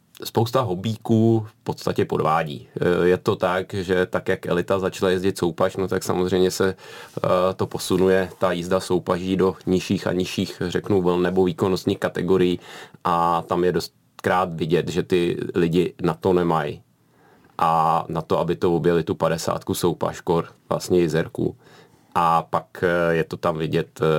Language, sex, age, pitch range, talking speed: Czech, male, 30-49, 85-95 Hz, 150 wpm